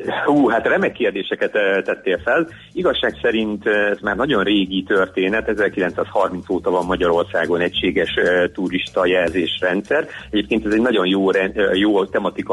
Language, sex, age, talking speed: Hungarian, male, 40-59, 160 wpm